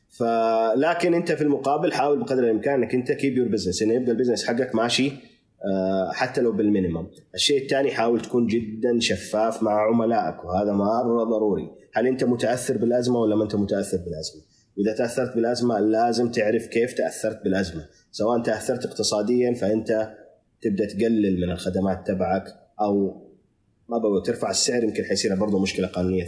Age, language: 30-49, Arabic